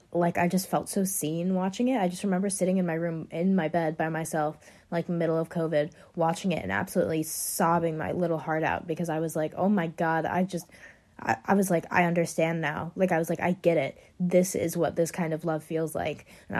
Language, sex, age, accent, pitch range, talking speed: English, female, 20-39, American, 155-185 Hz, 240 wpm